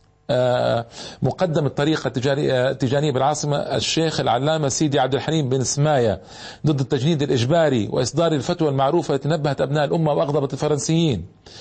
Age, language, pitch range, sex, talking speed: 40-59, Arabic, 135-160 Hz, male, 120 wpm